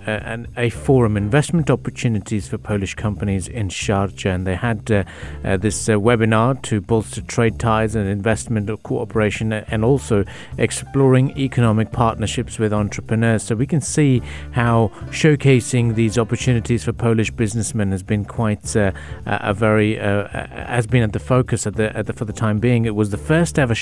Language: English